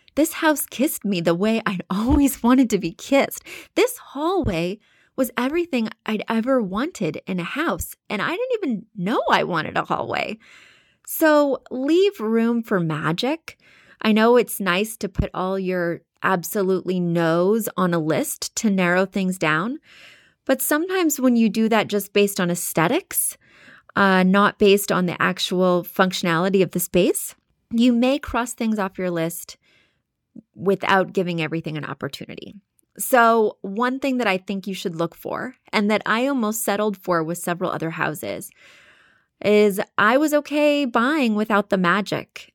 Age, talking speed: 20-39, 160 wpm